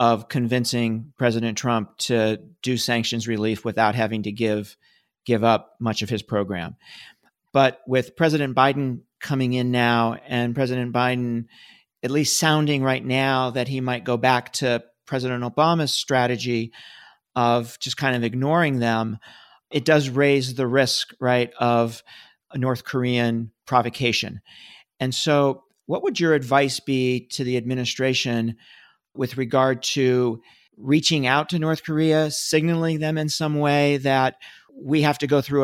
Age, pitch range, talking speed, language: 40-59, 120-145 Hz, 145 wpm, English